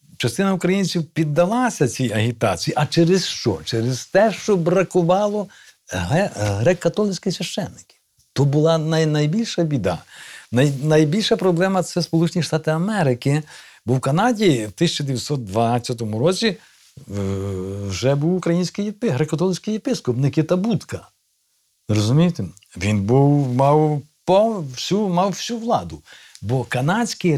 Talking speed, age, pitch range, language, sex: 105 wpm, 50-69, 125-180 Hz, Ukrainian, male